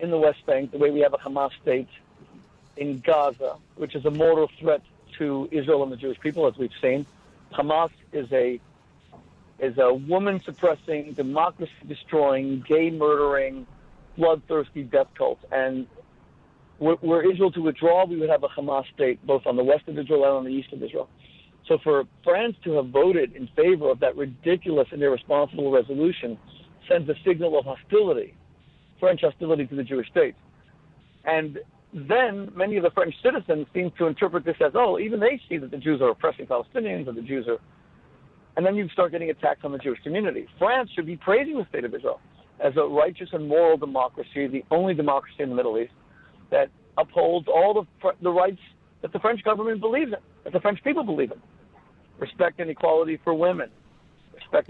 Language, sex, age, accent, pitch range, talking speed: English, male, 60-79, American, 140-180 Hz, 185 wpm